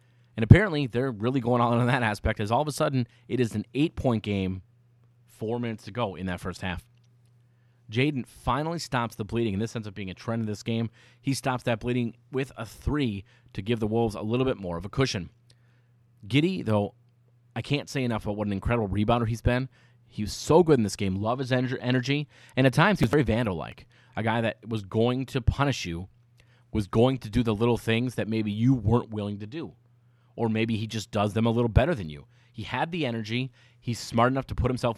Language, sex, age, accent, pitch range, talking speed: English, male, 30-49, American, 105-125 Hz, 230 wpm